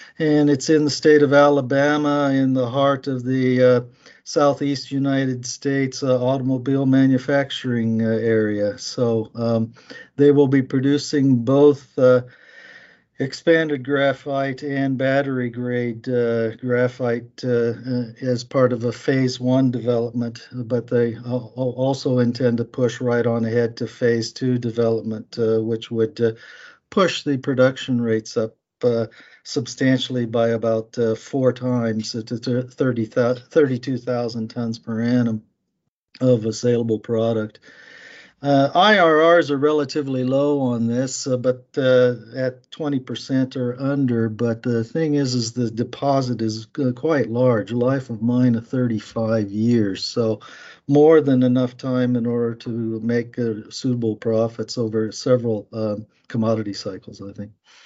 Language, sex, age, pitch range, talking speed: English, male, 50-69, 115-135 Hz, 135 wpm